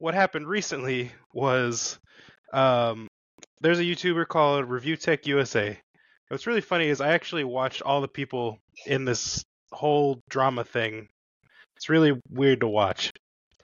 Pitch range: 125-160 Hz